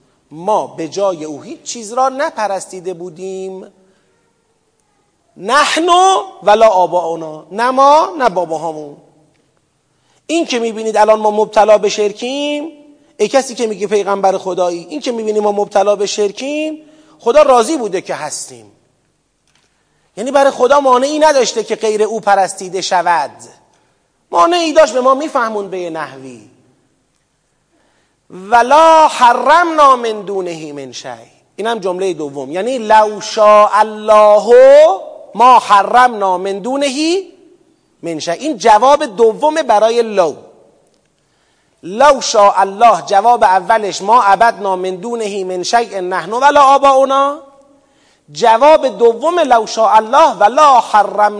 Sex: male